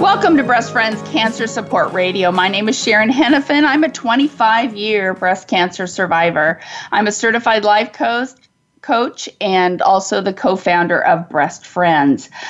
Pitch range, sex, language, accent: 185-260 Hz, female, English, American